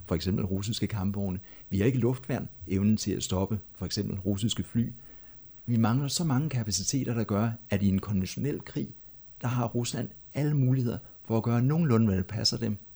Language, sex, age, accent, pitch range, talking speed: Danish, male, 60-79, native, 100-120 Hz, 195 wpm